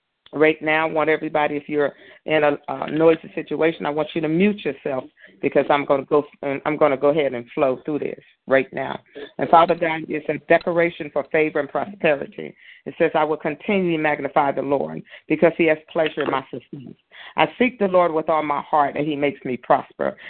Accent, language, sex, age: American, English, female, 40-59